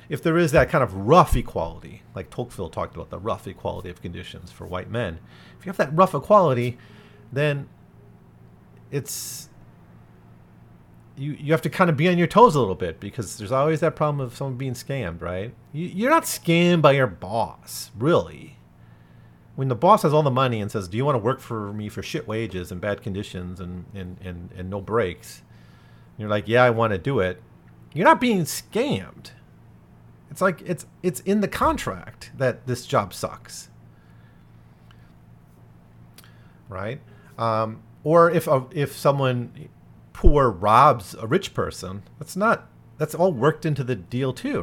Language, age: English, 40-59